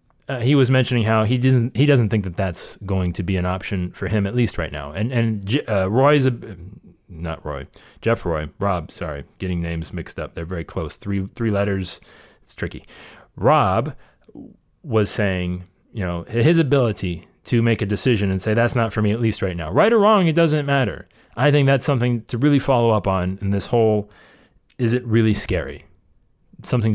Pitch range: 95-125 Hz